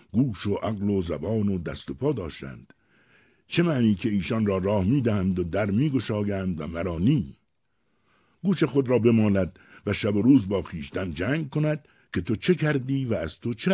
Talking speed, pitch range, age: 185 wpm, 90-135 Hz, 60-79